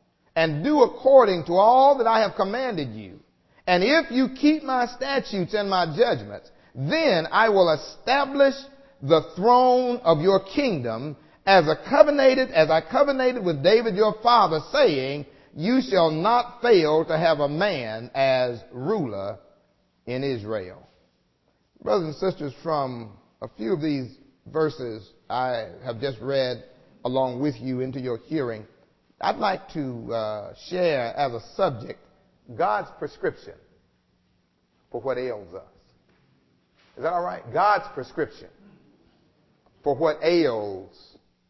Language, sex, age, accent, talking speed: English, male, 40-59, American, 135 wpm